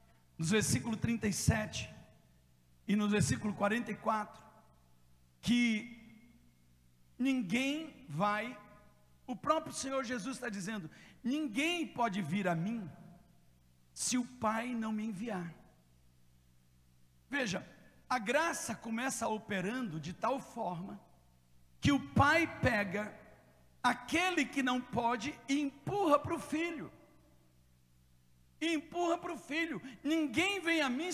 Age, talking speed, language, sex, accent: 60-79, 110 wpm, Portuguese, male, Brazilian